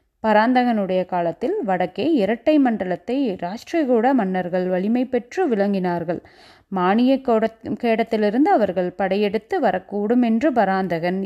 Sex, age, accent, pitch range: female, 30-49, native, 190-265 Hz